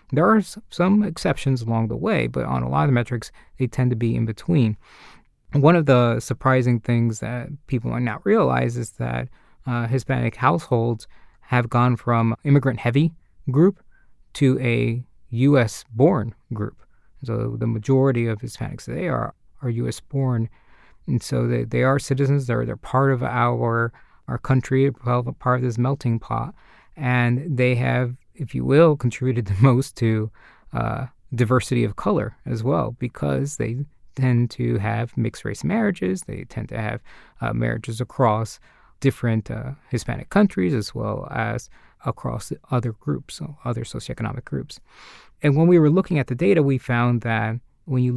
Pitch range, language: 115-135 Hz, English